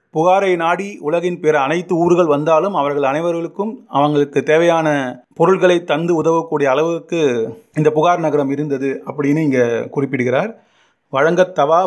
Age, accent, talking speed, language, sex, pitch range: 30-49, native, 115 wpm, Tamil, male, 145-185 Hz